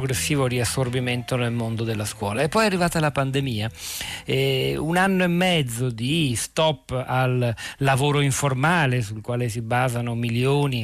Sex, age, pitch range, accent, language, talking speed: male, 40-59, 120-150 Hz, native, Italian, 150 wpm